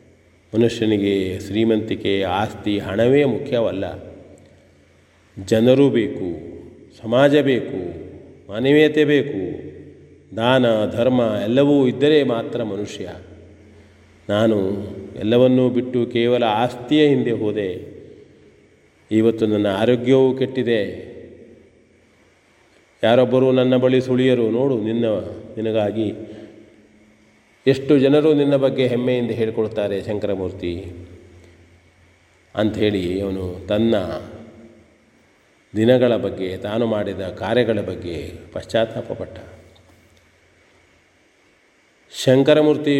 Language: Kannada